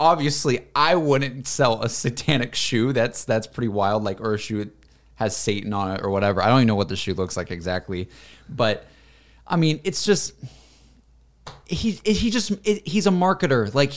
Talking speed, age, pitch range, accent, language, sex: 195 wpm, 20-39, 105-150 Hz, American, English, male